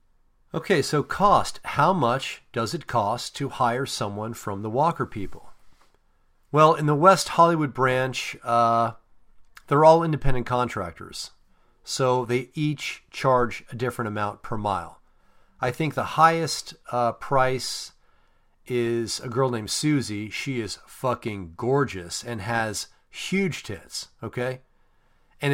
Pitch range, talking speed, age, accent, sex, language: 110-140 Hz, 130 wpm, 40-59, American, male, English